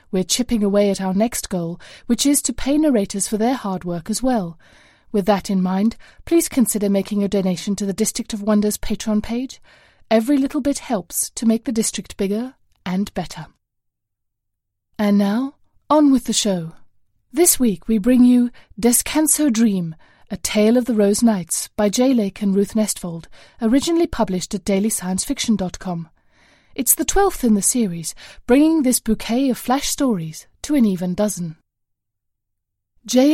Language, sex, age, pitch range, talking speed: English, female, 30-49, 190-240 Hz, 165 wpm